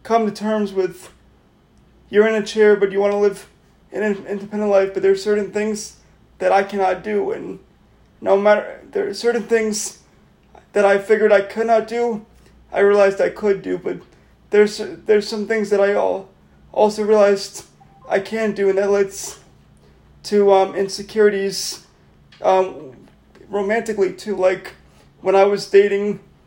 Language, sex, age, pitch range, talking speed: English, male, 30-49, 195-210 Hz, 160 wpm